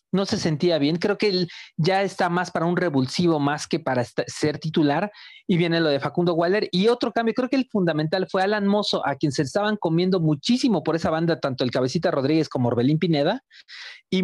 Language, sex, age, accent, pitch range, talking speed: Spanish, male, 40-59, Mexican, 150-200 Hz, 215 wpm